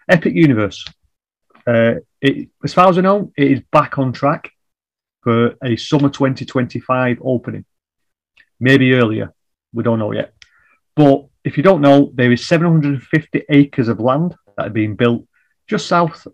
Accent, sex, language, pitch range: British, male, English, 115-145 Hz